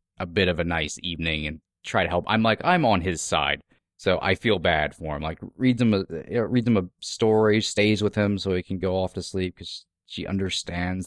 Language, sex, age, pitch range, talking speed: English, male, 30-49, 90-115 Hz, 245 wpm